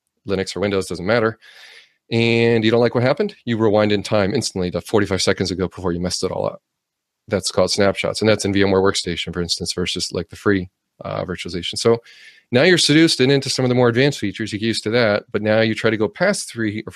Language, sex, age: English, male, 30-49